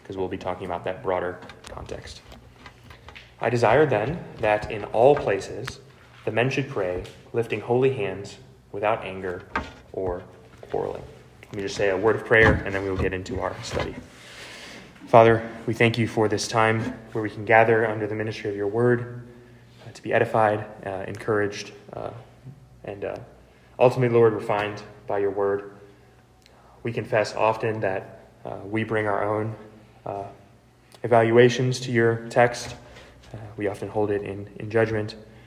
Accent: American